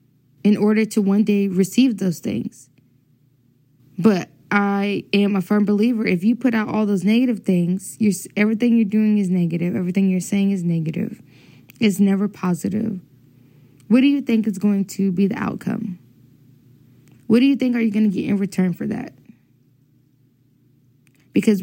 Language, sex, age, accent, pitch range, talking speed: English, female, 10-29, American, 190-235 Hz, 165 wpm